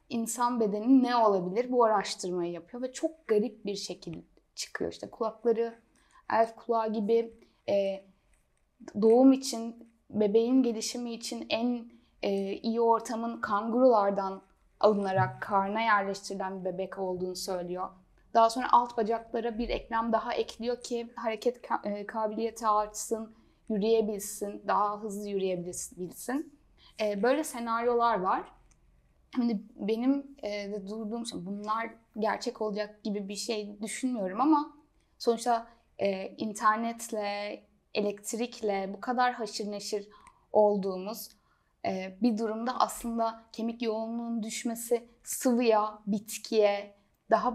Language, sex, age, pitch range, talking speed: Turkish, female, 10-29, 205-235 Hz, 105 wpm